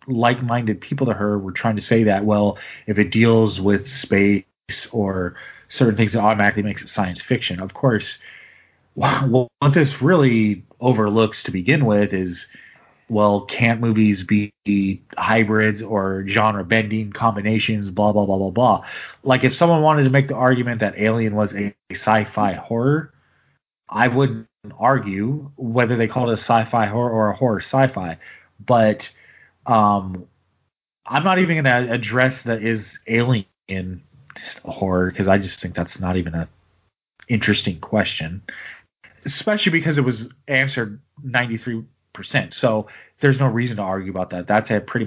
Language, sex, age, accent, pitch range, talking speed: English, male, 30-49, American, 100-125 Hz, 155 wpm